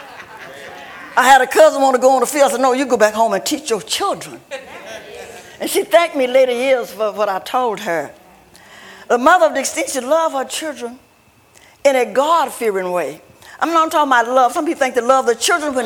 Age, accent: 60-79, American